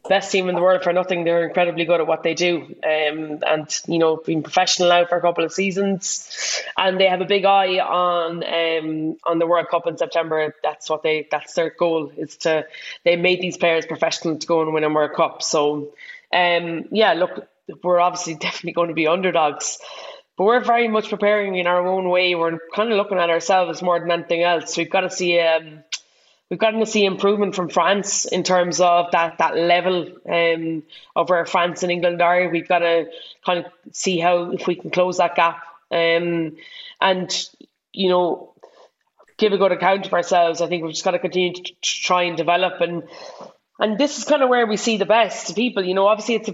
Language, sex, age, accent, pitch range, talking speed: English, female, 20-39, Irish, 170-195 Hz, 215 wpm